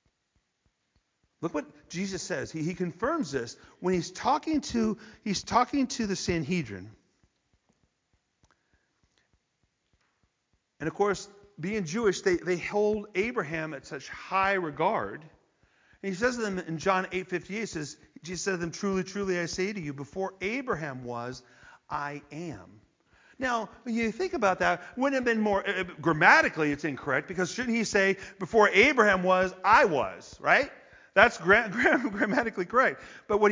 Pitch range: 155-210 Hz